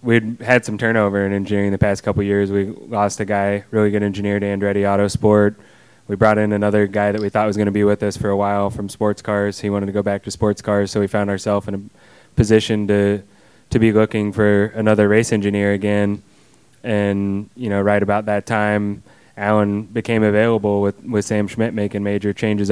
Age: 20-39